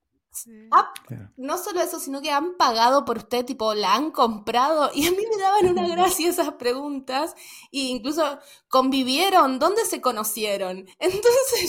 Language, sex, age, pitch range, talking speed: Spanish, female, 20-39, 200-285 Hz, 155 wpm